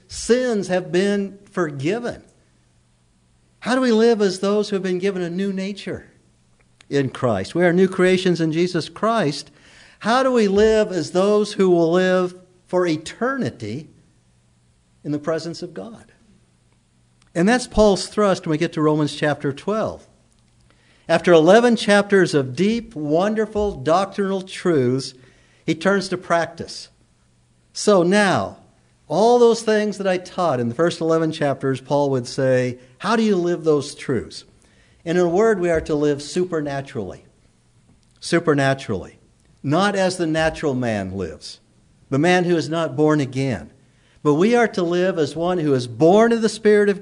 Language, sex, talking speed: English, male, 160 wpm